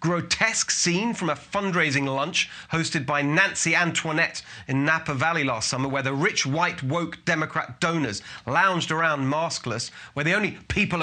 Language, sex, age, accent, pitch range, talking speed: English, male, 30-49, British, 140-190 Hz, 160 wpm